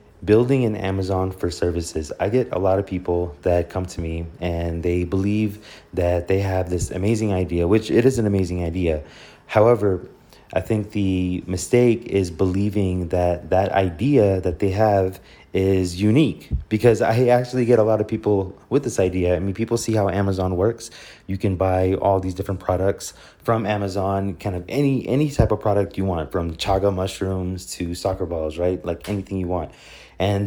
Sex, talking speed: male, 185 wpm